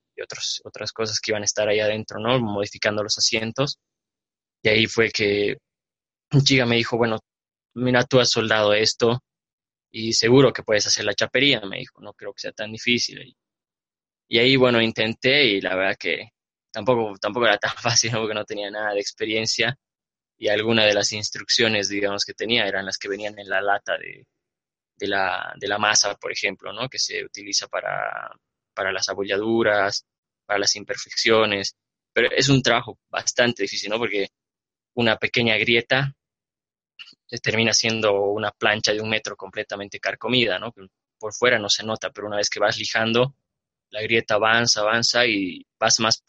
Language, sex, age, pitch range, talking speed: Spanish, male, 20-39, 100-115 Hz, 180 wpm